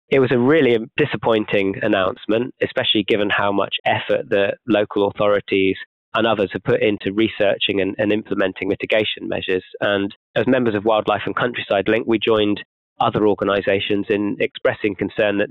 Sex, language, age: male, English, 20-39